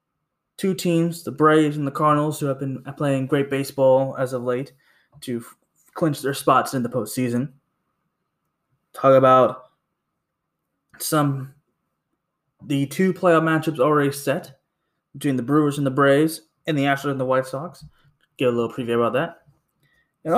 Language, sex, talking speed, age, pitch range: English, male, 155 wpm, 20-39, 135-170 Hz